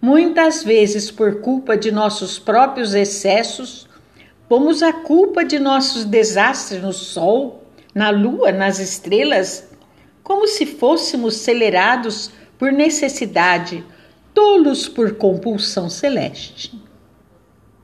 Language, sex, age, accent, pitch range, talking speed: Portuguese, female, 50-69, Brazilian, 195-255 Hz, 100 wpm